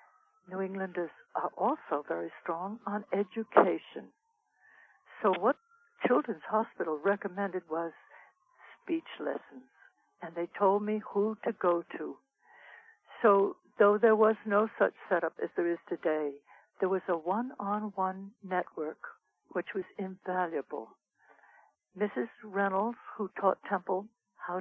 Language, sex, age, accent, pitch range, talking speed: English, female, 60-79, American, 185-225 Hz, 120 wpm